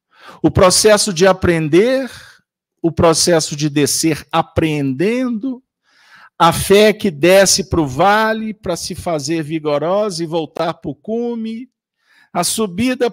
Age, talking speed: 50-69, 125 wpm